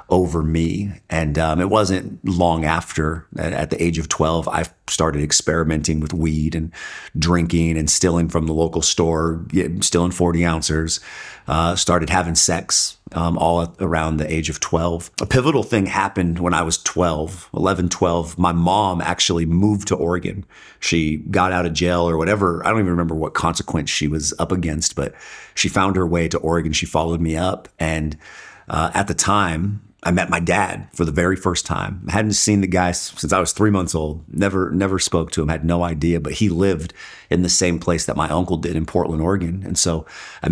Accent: American